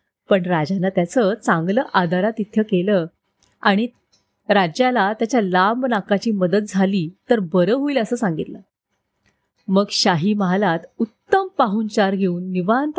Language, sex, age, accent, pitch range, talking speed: Marathi, female, 30-49, native, 185-250 Hz, 130 wpm